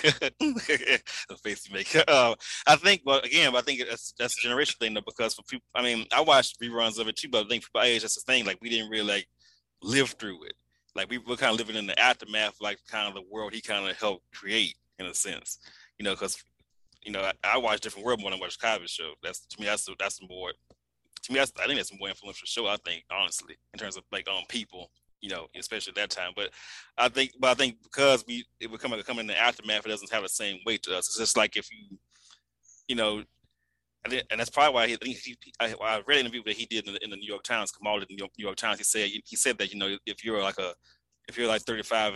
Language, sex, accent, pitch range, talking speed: English, male, American, 100-120 Hz, 275 wpm